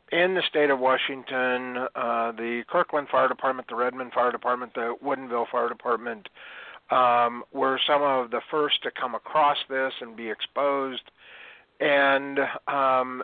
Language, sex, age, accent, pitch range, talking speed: English, male, 50-69, American, 120-140 Hz, 150 wpm